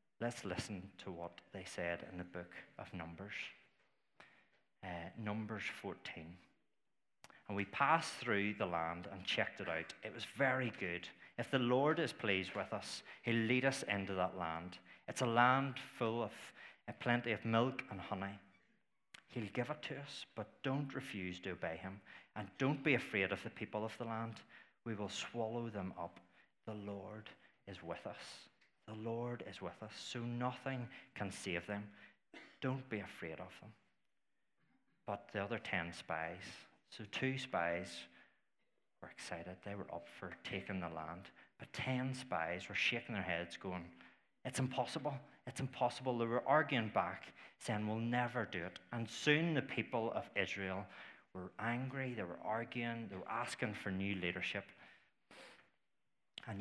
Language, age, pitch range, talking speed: English, 30-49, 95-125 Hz, 165 wpm